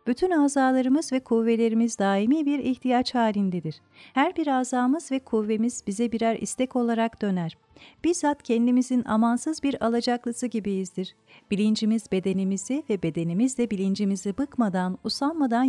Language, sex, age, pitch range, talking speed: Turkish, female, 40-59, 205-260 Hz, 120 wpm